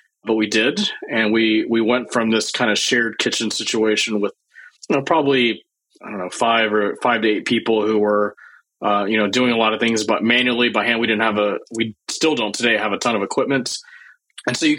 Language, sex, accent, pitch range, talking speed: English, male, American, 110-145 Hz, 230 wpm